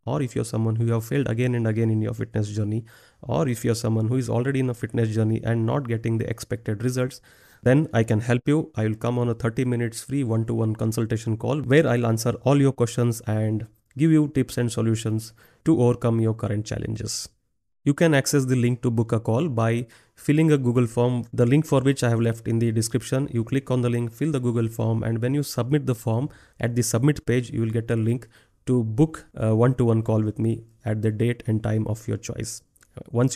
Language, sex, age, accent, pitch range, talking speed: Kannada, male, 30-49, native, 110-130 Hz, 235 wpm